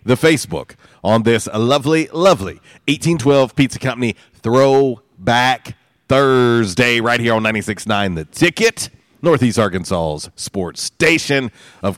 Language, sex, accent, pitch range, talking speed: English, male, American, 95-130 Hz, 110 wpm